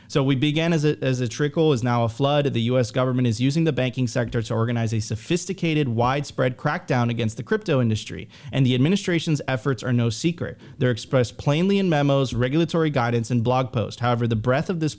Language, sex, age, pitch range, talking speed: English, male, 30-49, 120-145 Hz, 210 wpm